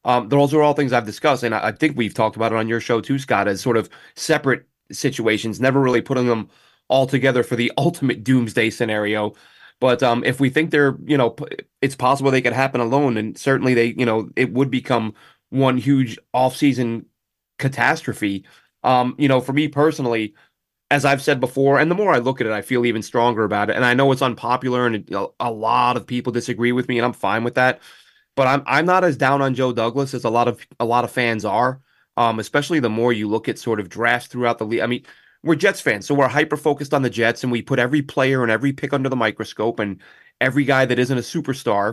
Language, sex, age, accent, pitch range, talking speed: English, male, 30-49, American, 115-140 Hz, 235 wpm